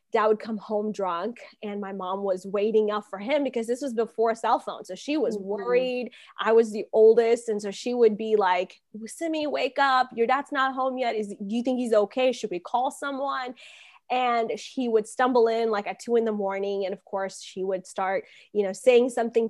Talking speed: 220 wpm